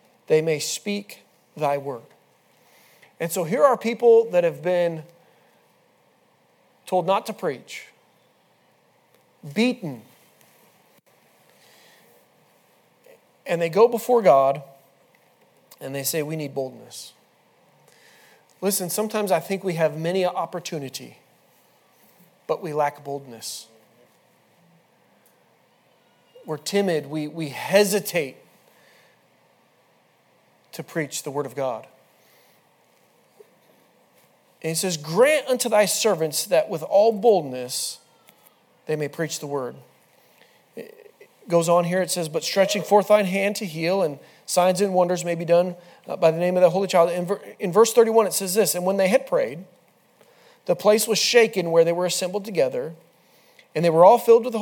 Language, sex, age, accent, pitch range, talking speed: English, male, 40-59, American, 160-220 Hz, 135 wpm